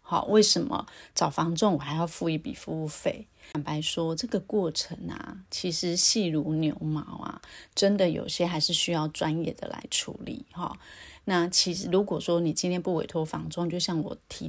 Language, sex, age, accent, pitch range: Chinese, female, 30-49, American, 165-195 Hz